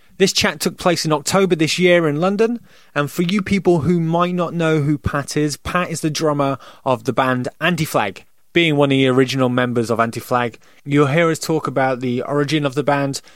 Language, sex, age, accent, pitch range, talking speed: English, male, 20-39, British, 125-165 Hz, 210 wpm